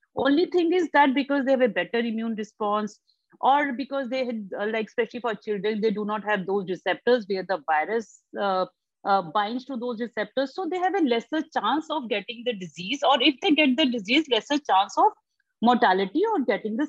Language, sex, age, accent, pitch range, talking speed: English, female, 50-69, Indian, 210-295 Hz, 200 wpm